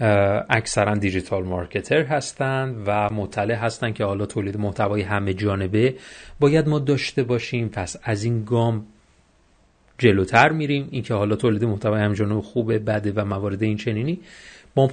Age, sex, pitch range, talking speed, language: 30-49, male, 105-135 Hz, 145 wpm, Persian